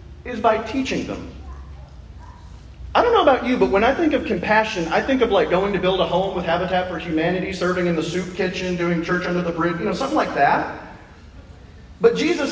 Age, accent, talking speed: 30-49, American, 215 wpm